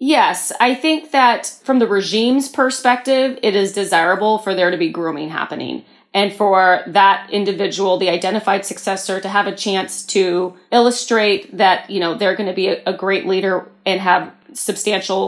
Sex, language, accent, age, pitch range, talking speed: female, English, American, 30-49, 190-245 Hz, 170 wpm